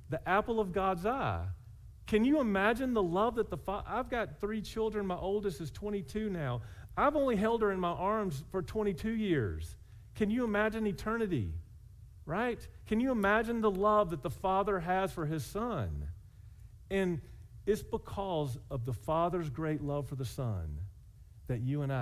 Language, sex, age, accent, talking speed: English, male, 40-59, American, 170 wpm